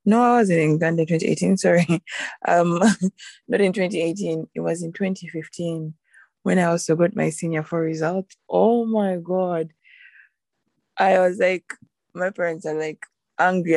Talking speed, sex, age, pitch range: 160 wpm, female, 20-39, 155-185 Hz